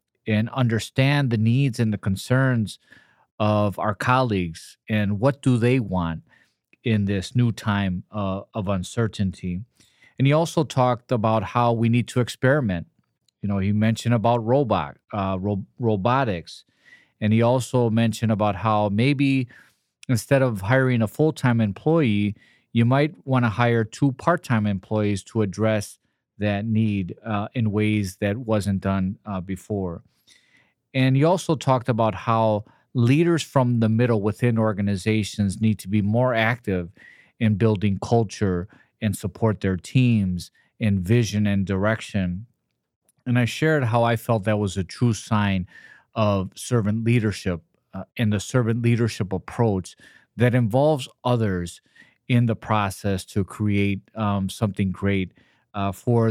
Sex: male